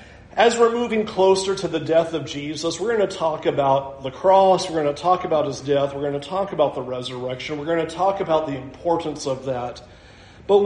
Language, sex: English, male